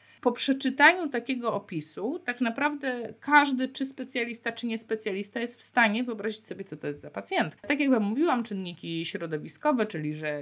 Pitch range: 150-220 Hz